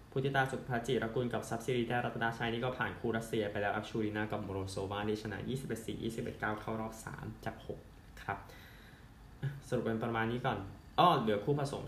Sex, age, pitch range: male, 20-39, 110-130 Hz